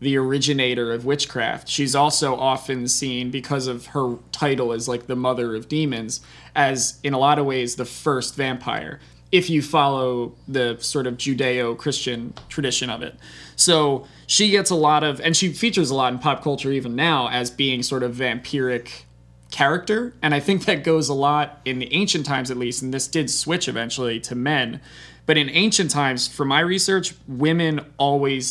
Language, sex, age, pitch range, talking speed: English, male, 20-39, 125-145 Hz, 185 wpm